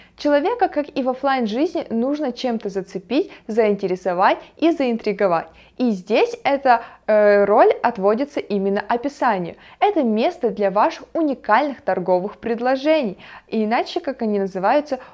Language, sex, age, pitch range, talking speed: Russian, female, 20-39, 210-285 Hz, 125 wpm